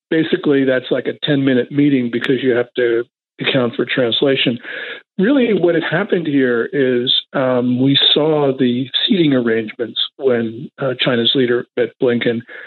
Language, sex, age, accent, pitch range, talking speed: English, male, 50-69, American, 135-185 Hz, 145 wpm